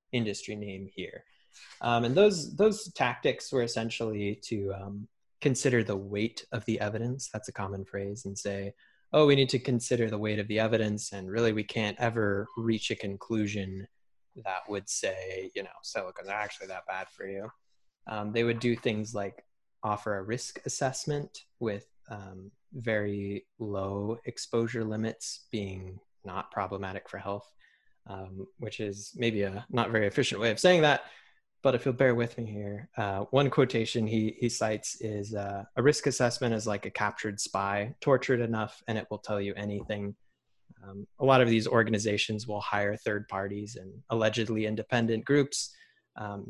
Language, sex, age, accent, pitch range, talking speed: English, male, 20-39, American, 100-120 Hz, 170 wpm